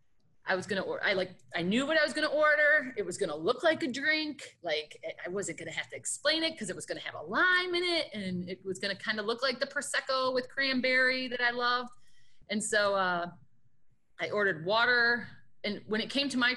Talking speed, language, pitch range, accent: 250 wpm, English, 200-300 Hz, American